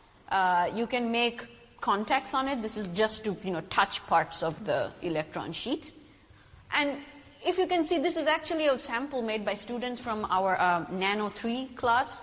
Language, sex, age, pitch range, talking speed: Danish, female, 30-49, 185-270 Hz, 185 wpm